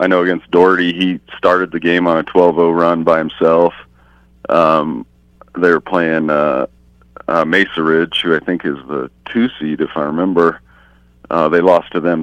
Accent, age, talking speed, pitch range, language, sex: American, 40-59, 185 wpm, 70-85 Hz, English, male